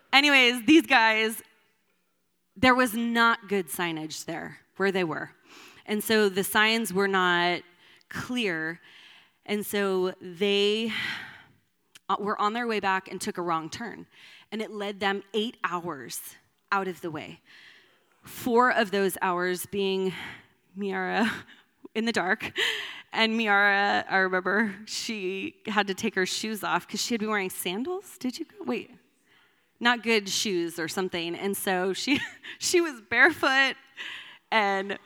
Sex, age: female, 20-39